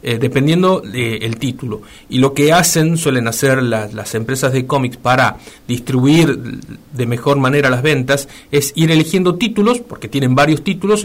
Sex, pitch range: male, 125-155 Hz